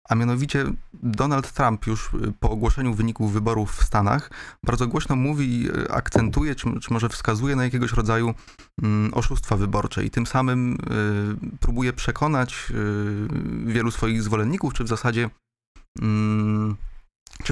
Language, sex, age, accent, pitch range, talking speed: Polish, male, 30-49, native, 105-125 Hz, 125 wpm